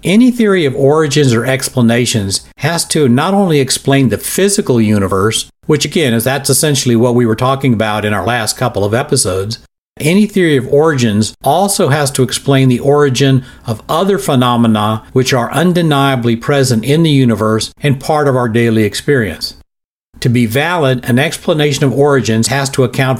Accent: American